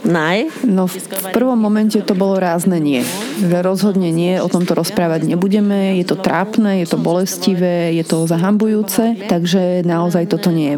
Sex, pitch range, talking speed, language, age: female, 170-195 Hz, 155 wpm, Slovak, 30-49